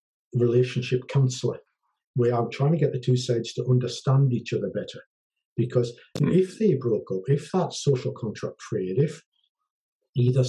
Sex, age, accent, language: male, 50-69, British, English